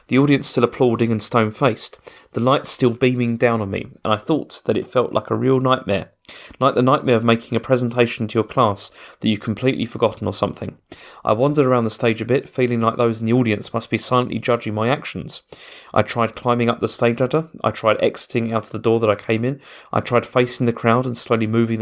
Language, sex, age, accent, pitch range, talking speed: English, male, 30-49, British, 110-130 Hz, 230 wpm